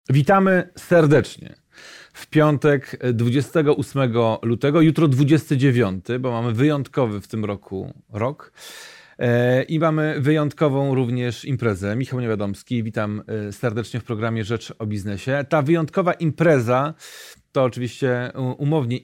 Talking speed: 110 wpm